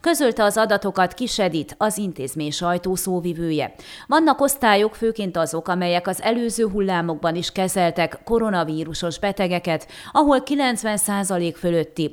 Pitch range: 165-220 Hz